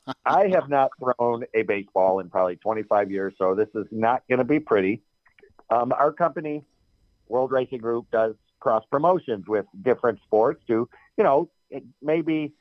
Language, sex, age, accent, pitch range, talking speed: English, male, 40-59, American, 115-145 Hz, 160 wpm